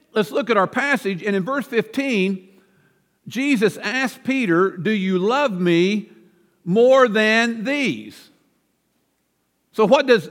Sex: male